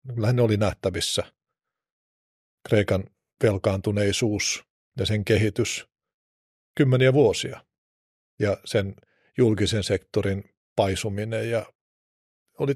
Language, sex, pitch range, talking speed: Finnish, male, 100-115 Hz, 80 wpm